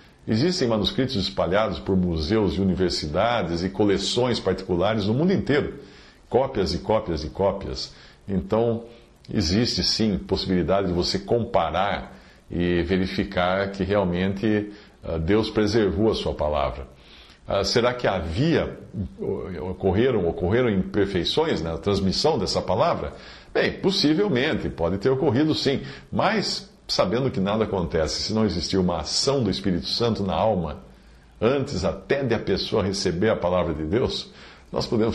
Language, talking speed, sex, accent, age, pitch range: Portuguese, 130 wpm, male, Brazilian, 50-69, 85-110 Hz